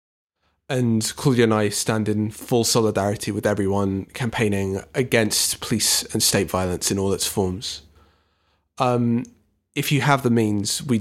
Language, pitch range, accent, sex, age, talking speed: English, 100-120 Hz, British, male, 20-39, 145 wpm